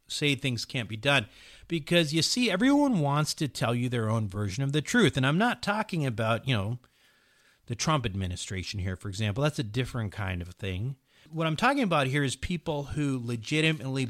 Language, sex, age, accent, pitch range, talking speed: English, male, 50-69, American, 115-160 Hz, 200 wpm